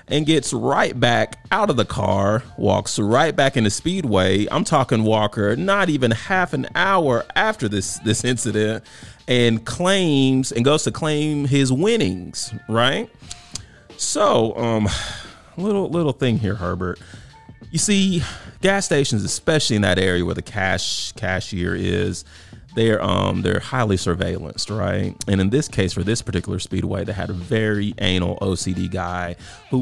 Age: 30-49